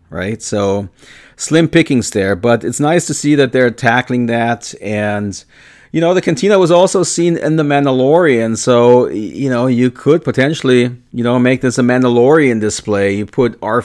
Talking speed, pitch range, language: 180 wpm, 105-135 Hz, English